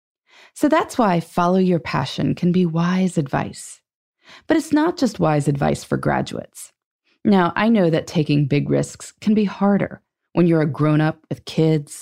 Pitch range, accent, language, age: 155-210 Hz, American, English, 30-49